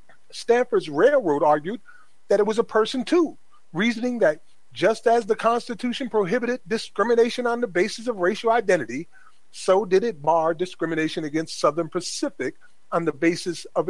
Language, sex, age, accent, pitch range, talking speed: English, male, 40-59, American, 170-235 Hz, 150 wpm